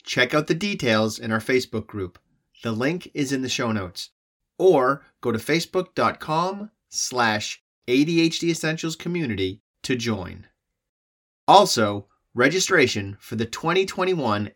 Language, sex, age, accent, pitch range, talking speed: English, male, 30-49, American, 105-160 Hz, 125 wpm